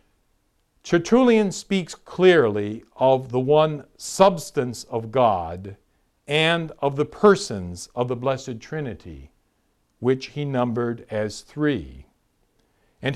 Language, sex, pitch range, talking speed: English, male, 110-150 Hz, 105 wpm